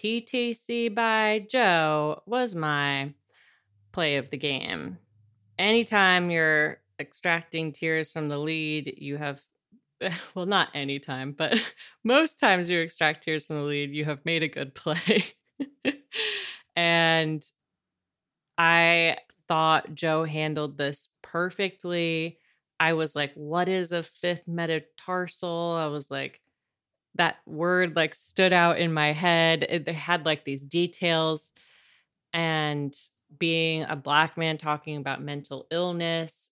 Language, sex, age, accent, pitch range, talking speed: English, female, 30-49, American, 150-170 Hz, 125 wpm